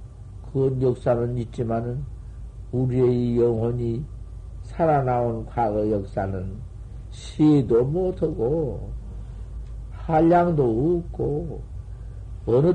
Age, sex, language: 50-69, male, Korean